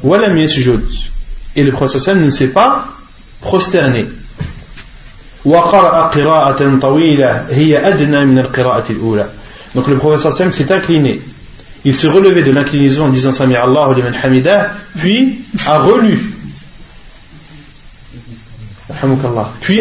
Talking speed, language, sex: 75 wpm, French, male